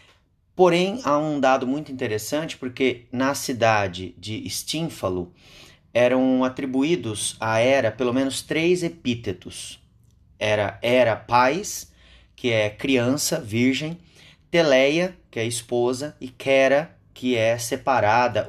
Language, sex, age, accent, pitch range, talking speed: Portuguese, male, 30-49, Brazilian, 105-130 Hz, 115 wpm